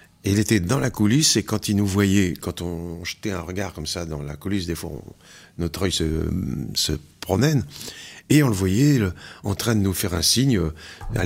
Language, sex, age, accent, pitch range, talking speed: French, male, 50-69, French, 90-125 Hz, 210 wpm